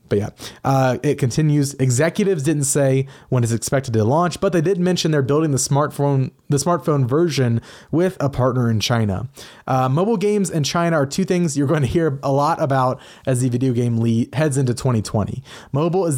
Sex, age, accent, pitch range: male, 30-49, American, 125-160 Hz